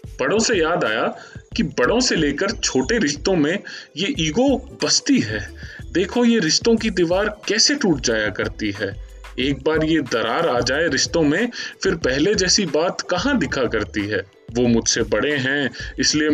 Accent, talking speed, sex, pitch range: native, 170 wpm, male, 120-190 Hz